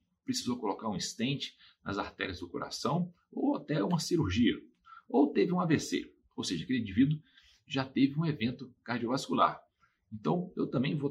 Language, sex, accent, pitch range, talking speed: Portuguese, male, Brazilian, 140-200 Hz, 155 wpm